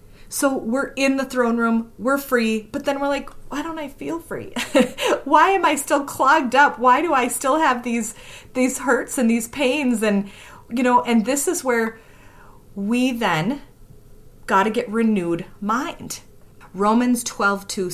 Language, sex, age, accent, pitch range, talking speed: English, female, 30-49, American, 145-225 Hz, 170 wpm